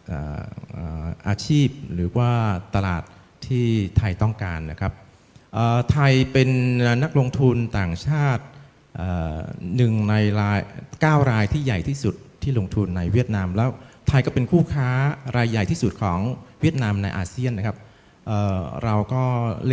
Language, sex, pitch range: Thai, male, 95-125 Hz